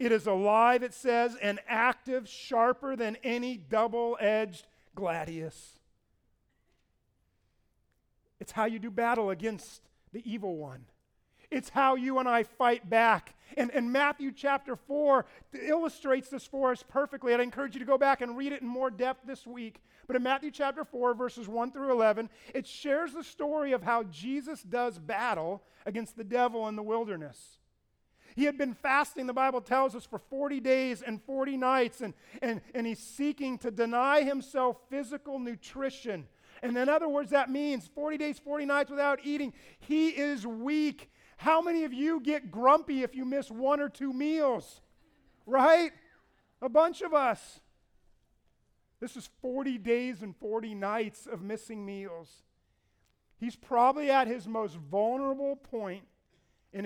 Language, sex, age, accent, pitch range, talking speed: English, male, 40-59, American, 225-275 Hz, 160 wpm